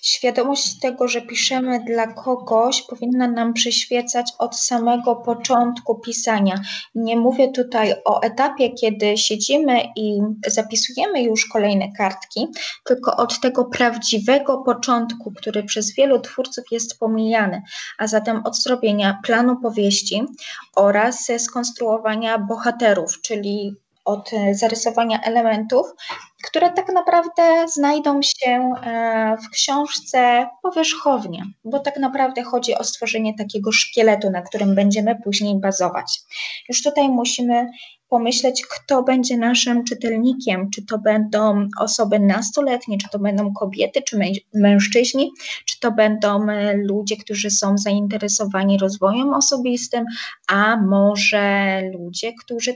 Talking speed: 115 wpm